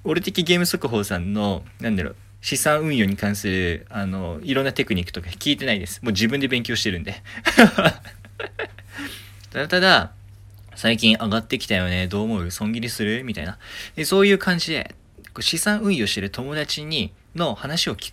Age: 20-39